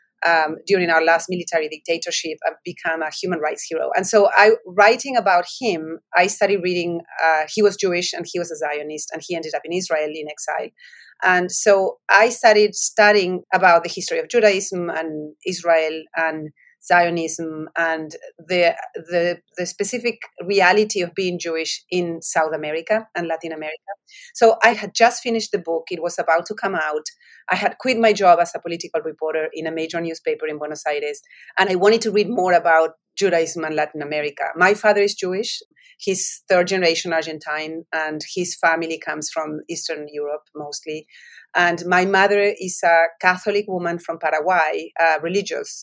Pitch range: 160-200 Hz